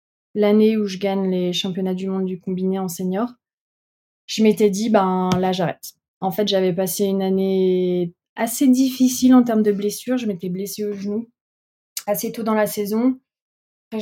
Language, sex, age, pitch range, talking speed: French, female, 20-39, 185-220 Hz, 185 wpm